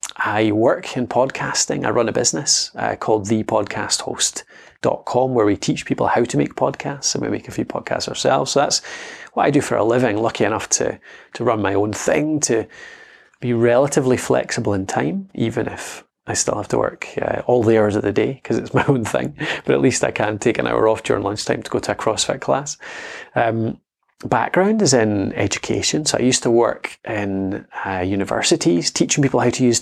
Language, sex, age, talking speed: English, male, 30-49, 205 wpm